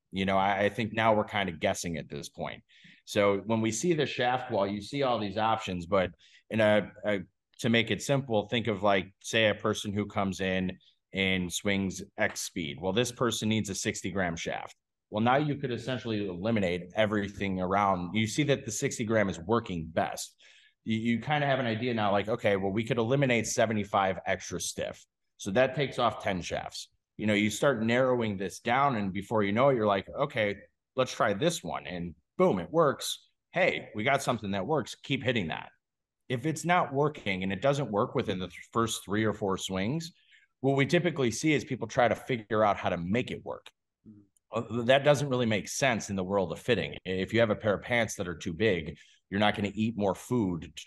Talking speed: 220 wpm